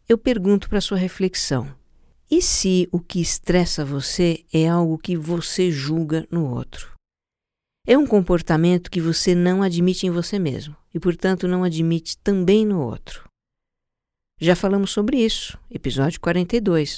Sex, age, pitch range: female, 50-69, 160-200 Hz